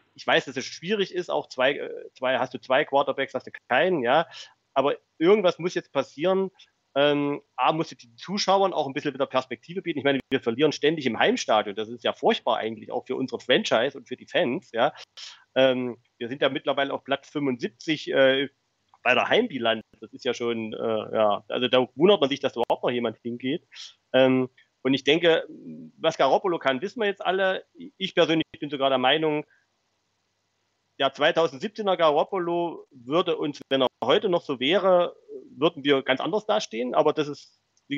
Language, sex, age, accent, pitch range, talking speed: German, male, 40-59, German, 130-165 Hz, 190 wpm